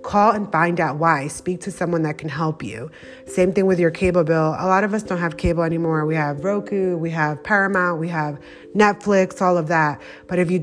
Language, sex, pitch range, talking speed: English, female, 160-185 Hz, 230 wpm